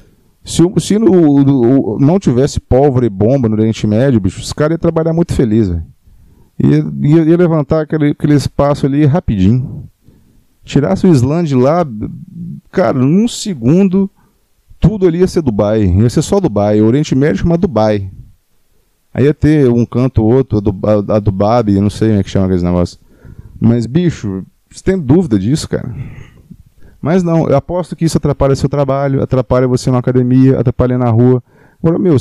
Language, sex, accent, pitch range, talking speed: Portuguese, male, Brazilian, 110-165 Hz, 185 wpm